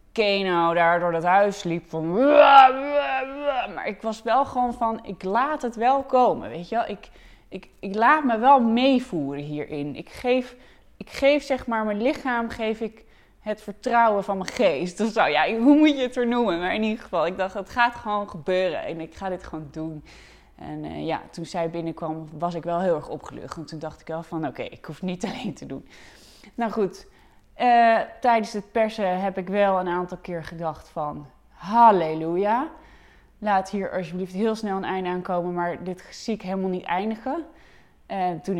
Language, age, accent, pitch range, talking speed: Dutch, 20-39, Dutch, 175-230 Hz, 195 wpm